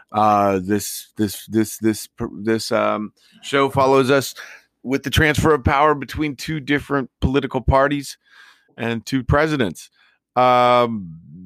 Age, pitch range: 40-59, 105-140 Hz